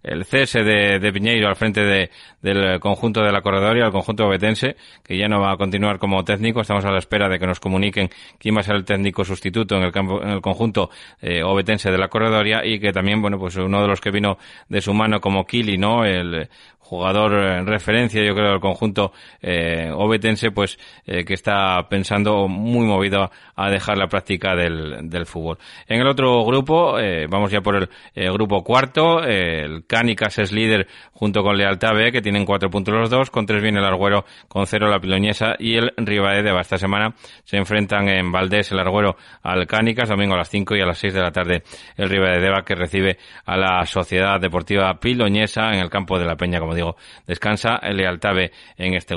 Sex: male